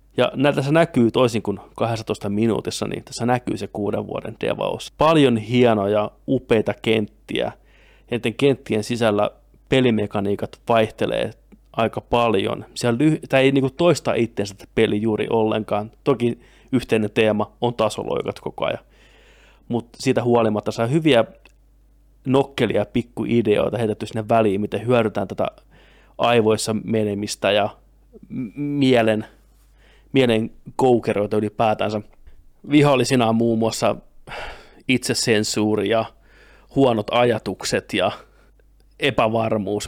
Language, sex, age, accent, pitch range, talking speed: Finnish, male, 30-49, native, 105-125 Hz, 110 wpm